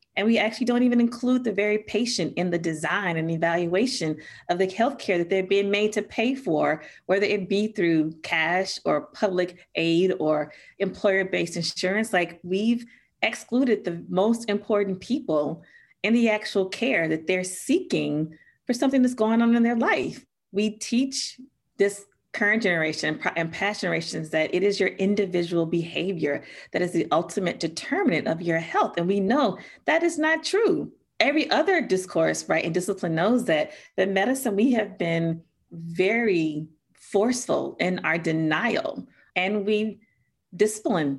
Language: English